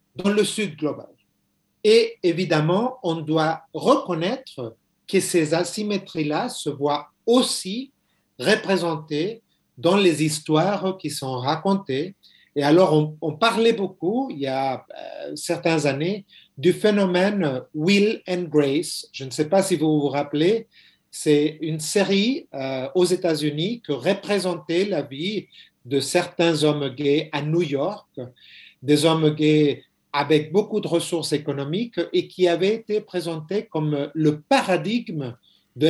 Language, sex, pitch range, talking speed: French, male, 145-185 Hz, 140 wpm